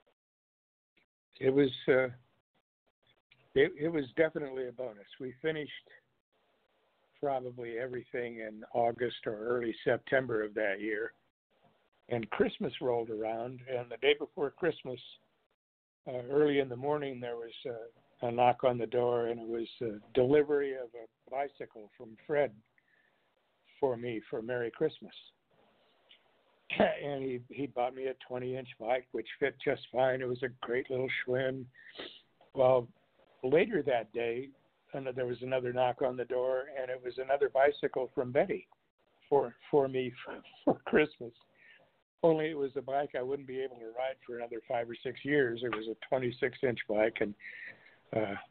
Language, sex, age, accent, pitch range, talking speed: English, male, 60-79, American, 120-140 Hz, 155 wpm